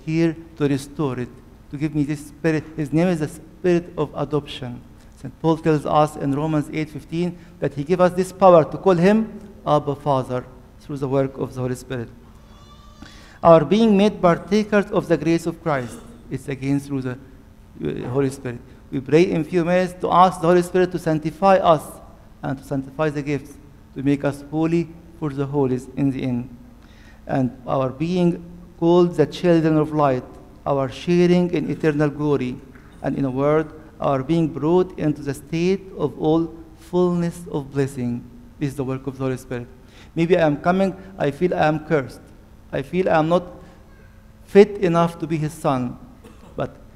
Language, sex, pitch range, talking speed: English, male, 135-170 Hz, 180 wpm